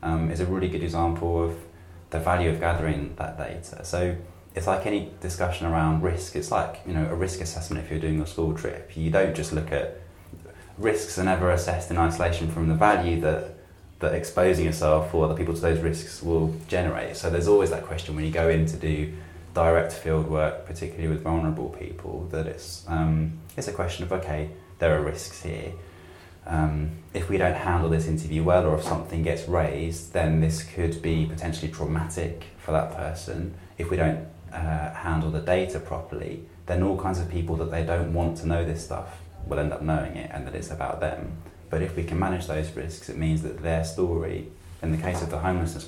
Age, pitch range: 20-39, 80-85 Hz